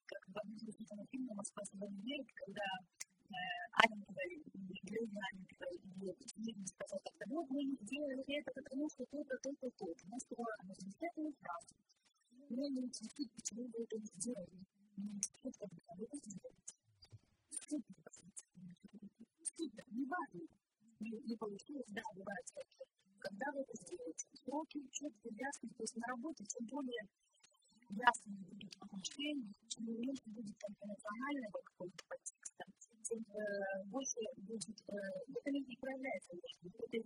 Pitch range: 200-275 Hz